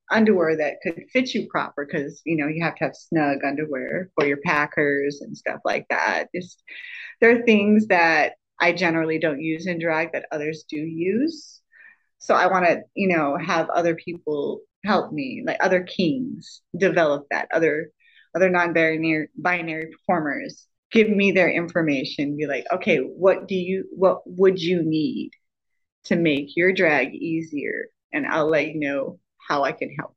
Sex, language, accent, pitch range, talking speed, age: female, English, American, 160-235 Hz, 170 wpm, 30-49